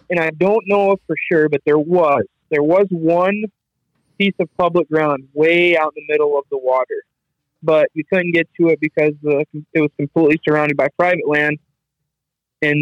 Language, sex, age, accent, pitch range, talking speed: English, male, 20-39, American, 140-165 Hz, 190 wpm